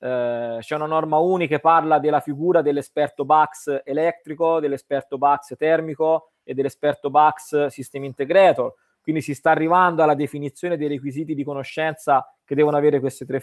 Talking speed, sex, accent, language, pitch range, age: 150 wpm, male, native, Italian, 145-180 Hz, 20-39